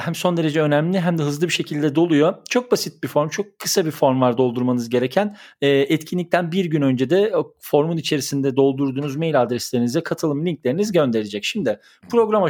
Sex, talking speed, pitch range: male, 180 wpm, 120-160 Hz